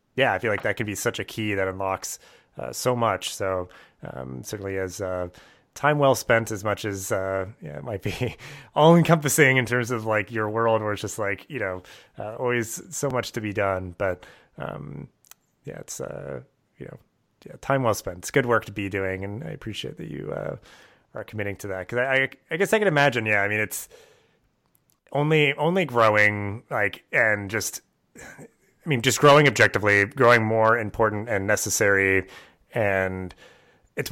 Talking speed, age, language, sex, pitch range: 190 wpm, 30-49, English, male, 100-125 Hz